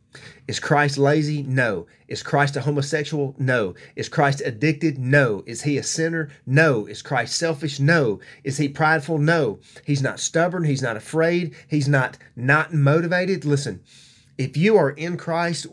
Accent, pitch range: American, 130-155 Hz